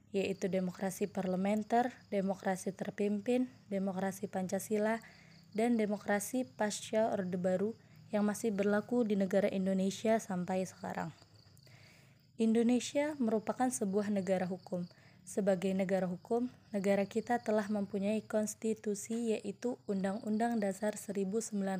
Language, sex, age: Indonesian, female, 20-39